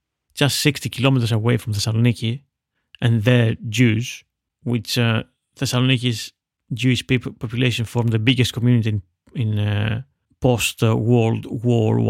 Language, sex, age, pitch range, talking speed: English, male, 30-49, 110-125 Hz, 120 wpm